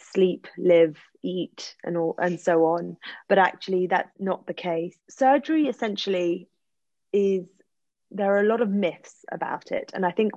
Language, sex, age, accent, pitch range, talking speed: English, female, 30-49, British, 175-200 Hz, 160 wpm